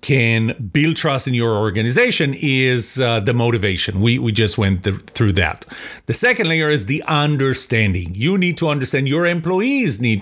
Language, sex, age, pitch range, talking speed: English, male, 40-59, 115-160 Hz, 170 wpm